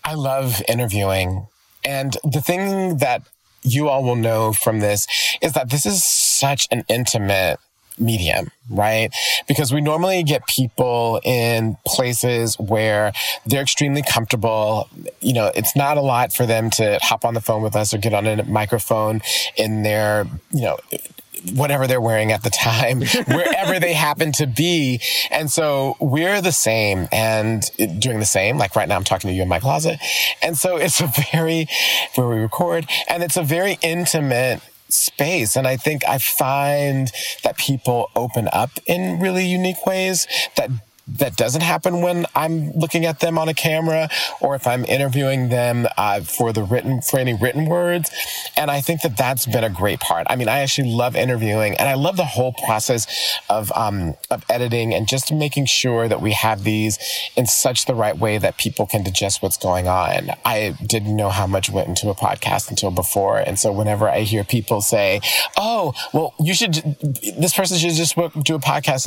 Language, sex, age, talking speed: English, male, 30-49, 185 wpm